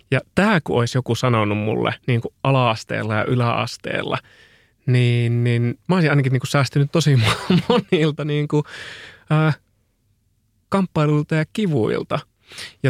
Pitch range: 115-145 Hz